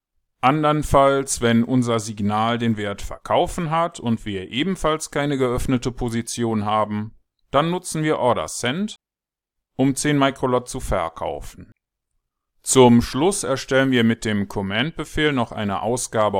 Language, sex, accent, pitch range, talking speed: German, male, German, 110-150 Hz, 130 wpm